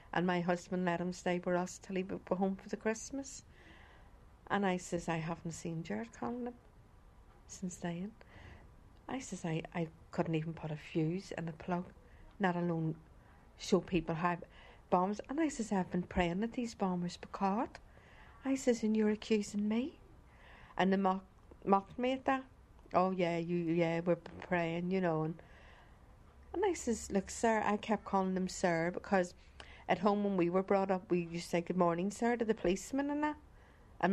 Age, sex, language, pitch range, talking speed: 60-79, female, English, 165-205 Hz, 190 wpm